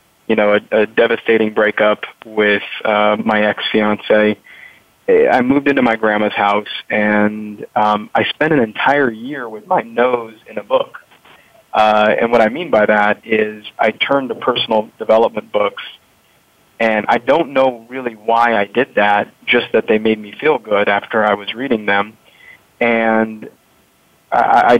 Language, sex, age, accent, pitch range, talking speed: English, male, 20-39, American, 105-115 Hz, 160 wpm